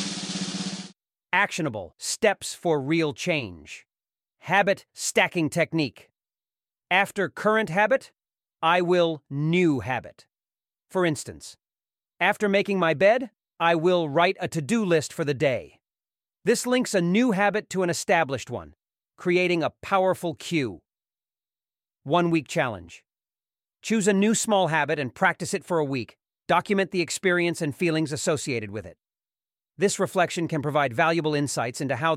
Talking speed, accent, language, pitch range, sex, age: 135 wpm, American, English, 135-180 Hz, male, 40-59